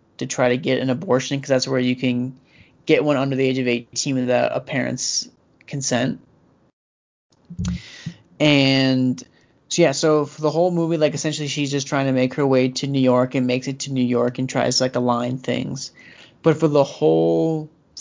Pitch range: 130-150 Hz